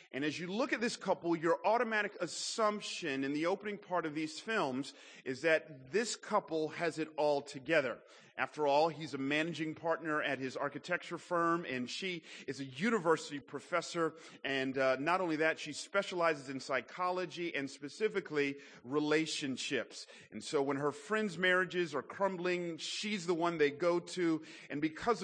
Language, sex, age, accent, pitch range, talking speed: English, male, 40-59, American, 150-190 Hz, 165 wpm